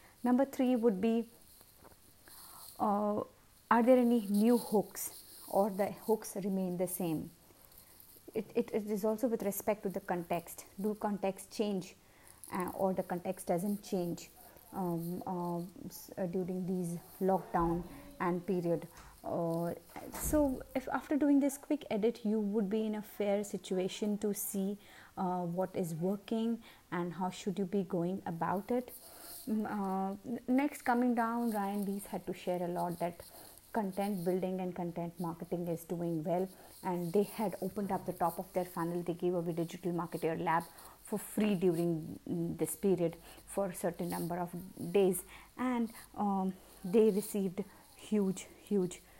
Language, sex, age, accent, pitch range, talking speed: English, female, 30-49, Indian, 180-215 Hz, 150 wpm